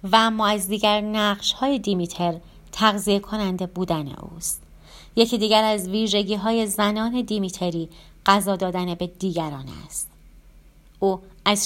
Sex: female